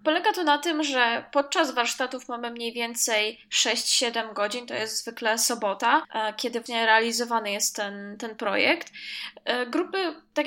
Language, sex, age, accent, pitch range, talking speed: Polish, female, 10-29, native, 230-280 Hz, 150 wpm